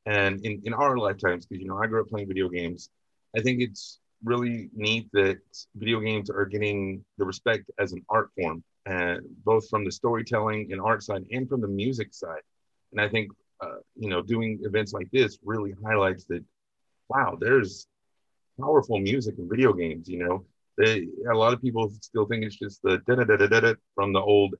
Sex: male